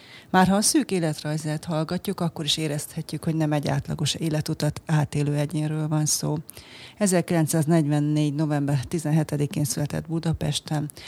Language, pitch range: Hungarian, 140-160 Hz